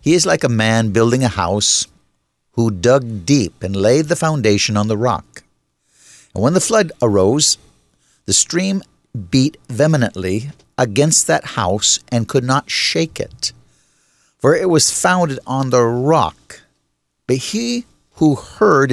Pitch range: 105-135 Hz